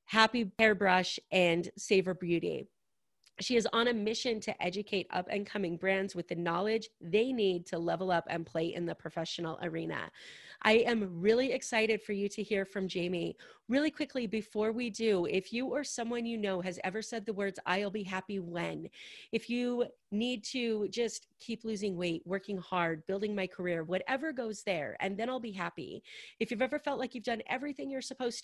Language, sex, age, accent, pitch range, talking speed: English, female, 30-49, American, 185-230 Hz, 190 wpm